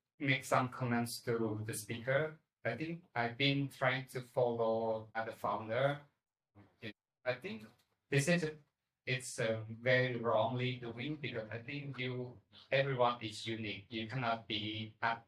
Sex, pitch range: male, 110-135 Hz